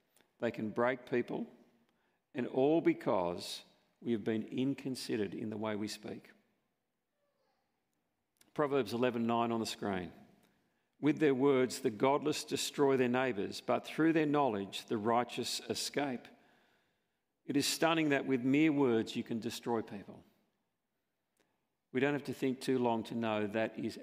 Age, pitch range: 50-69, 115-140 Hz